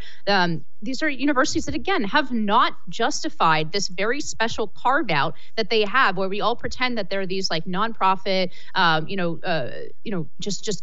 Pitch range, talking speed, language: 185-235 Hz, 185 wpm, English